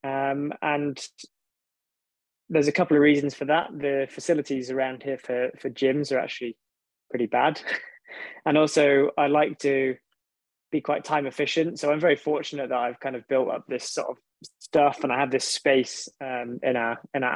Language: English